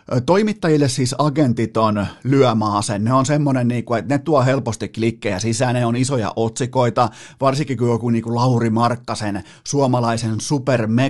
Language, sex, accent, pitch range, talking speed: Finnish, male, native, 110-130 Hz, 150 wpm